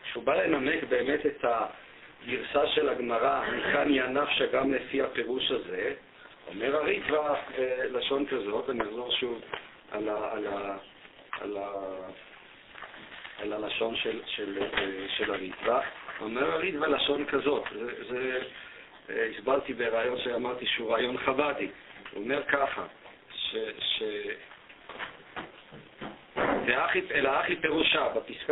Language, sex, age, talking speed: Hebrew, male, 50-69, 115 wpm